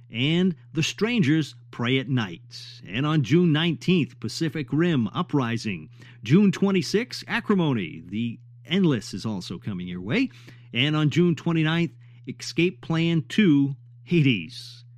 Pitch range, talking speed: 120-170 Hz, 125 wpm